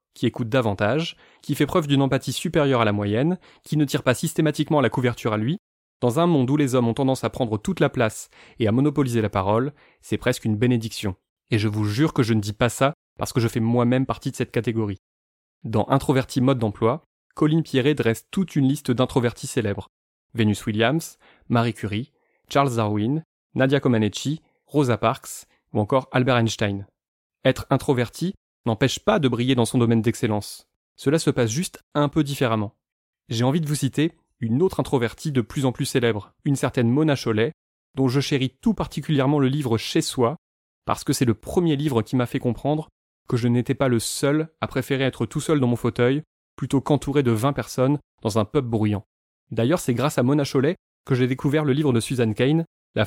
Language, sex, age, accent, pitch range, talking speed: French, male, 20-39, French, 115-145 Hz, 200 wpm